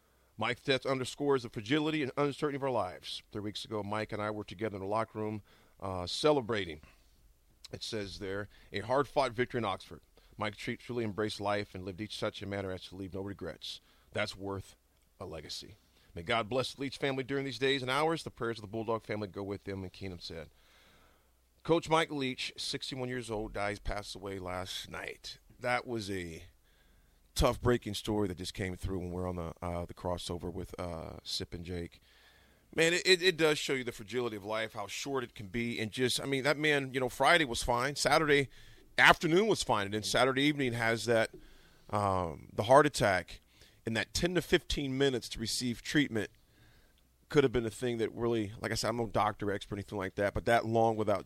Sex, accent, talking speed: male, American, 205 wpm